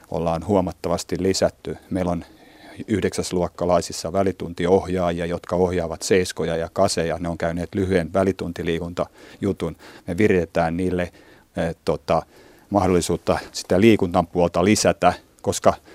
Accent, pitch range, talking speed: native, 85-95 Hz, 105 wpm